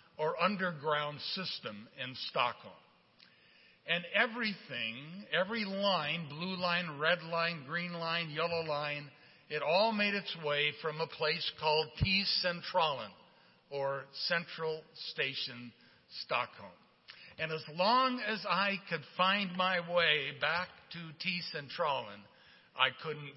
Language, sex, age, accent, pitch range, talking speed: English, male, 60-79, American, 145-190 Hz, 115 wpm